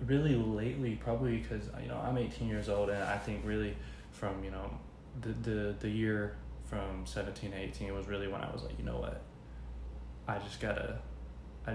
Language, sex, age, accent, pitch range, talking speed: English, male, 10-29, American, 90-105 Hz, 200 wpm